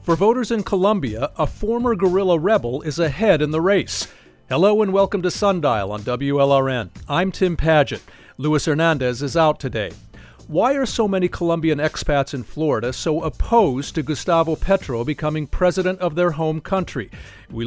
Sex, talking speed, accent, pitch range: male, 165 wpm, American, 140-185 Hz